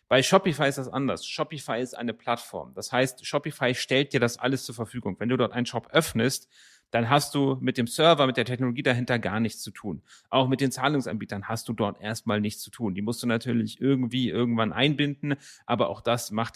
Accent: German